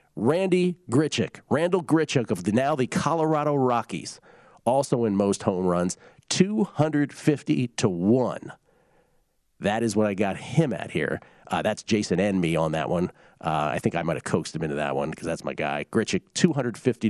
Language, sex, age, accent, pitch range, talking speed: English, male, 40-59, American, 100-150 Hz, 180 wpm